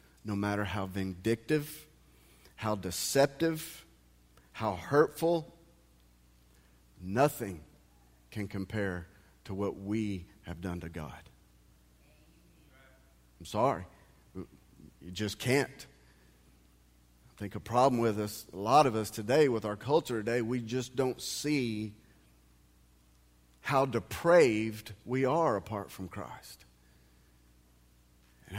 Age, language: 40-59, English